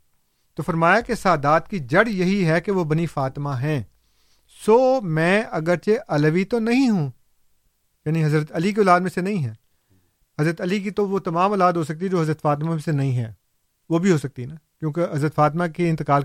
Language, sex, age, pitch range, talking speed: Urdu, male, 40-59, 140-185 Hz, 210 wpm